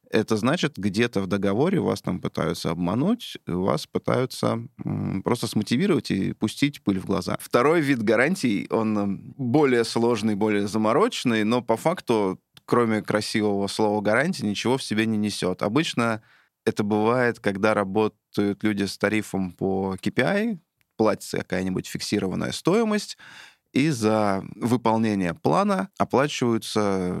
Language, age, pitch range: Russian, 20-39, 105-125 Hz